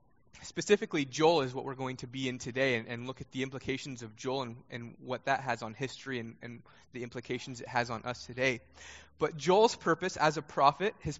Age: 20-39